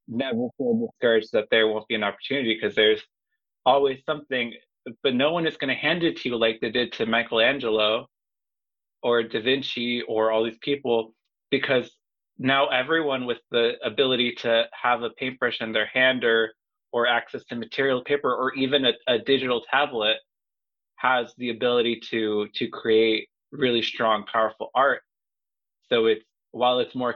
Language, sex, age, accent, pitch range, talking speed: English, male, 20-39, American, 115-135 Hz, 165 wpm